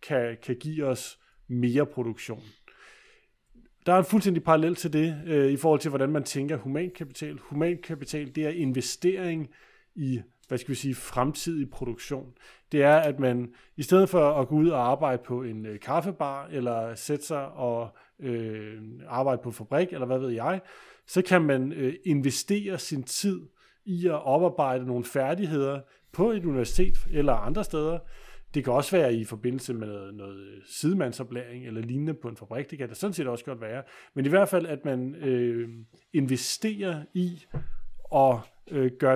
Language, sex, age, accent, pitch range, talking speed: Danish, male, 30-49, native, 125-155 Hz, 170 wpm